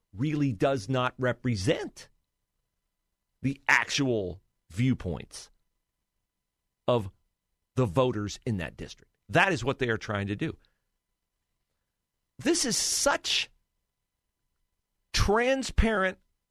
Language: English